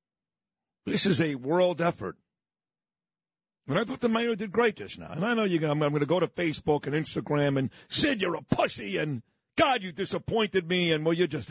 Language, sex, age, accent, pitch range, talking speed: English, male, 50-69, American, 155-225 Hz, 215 wpm